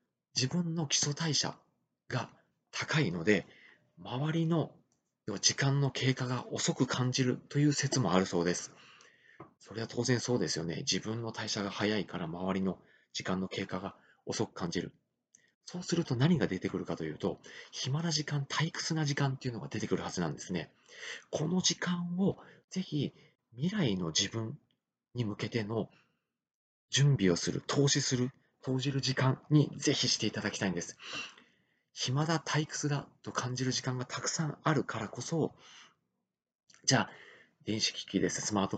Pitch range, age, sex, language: 105-145 Hz, 30-49, male, Japanese